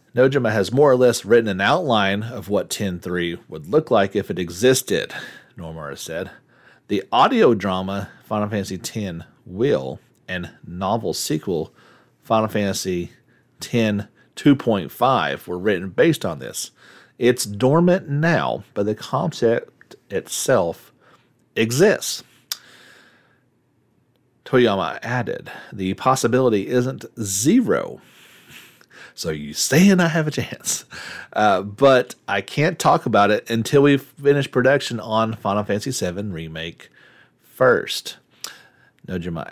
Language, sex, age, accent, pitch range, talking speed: English, male, 40-59, American, 95-130 Hz, 115 wpm